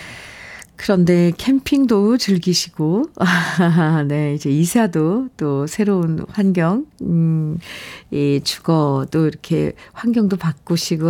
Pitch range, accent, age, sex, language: 160-205 Hz, native, 50-69, female, Korean